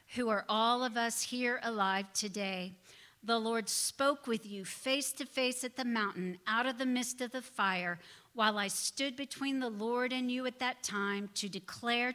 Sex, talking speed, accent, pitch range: female, 195 wpm, American, 205-255 Hz